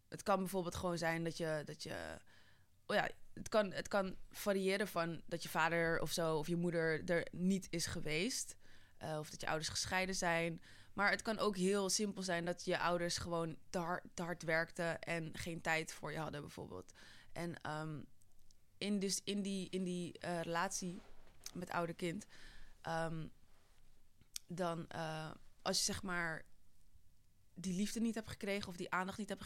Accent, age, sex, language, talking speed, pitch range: Dutch, 20-39, female, English, 185 wpm, 165-190 Hz